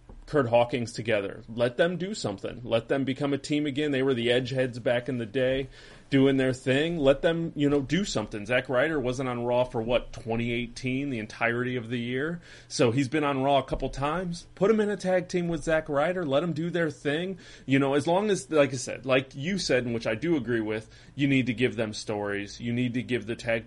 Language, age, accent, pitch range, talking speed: English, 30-49, American, 115-145 Hz, 240 wpm